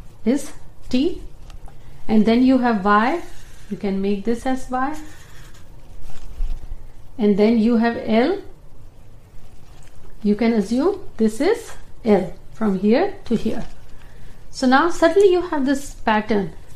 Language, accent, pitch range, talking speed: Hindi, native, 200-260 Hz, 125 wpm